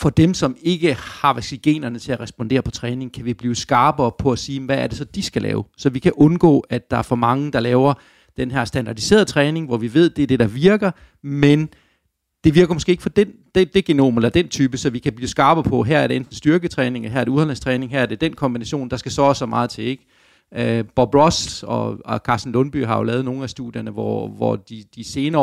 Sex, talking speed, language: male, 250 wpm, Danish